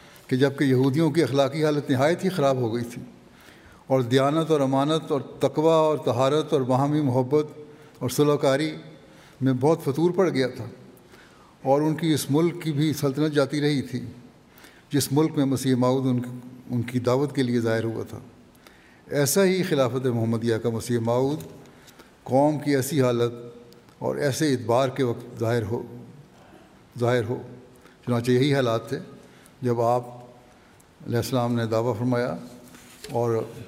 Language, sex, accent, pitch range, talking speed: English, male, Indian, 120-140 Hz, 95 wpm